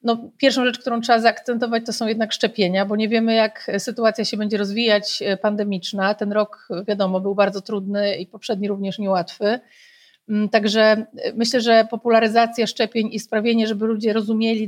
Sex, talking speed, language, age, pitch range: female, 160 wpm, Polish, 30-49, 210-240 Hz